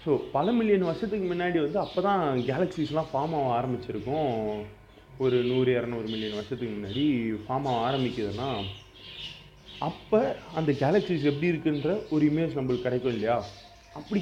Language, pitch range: Tamil, 120-155 Hz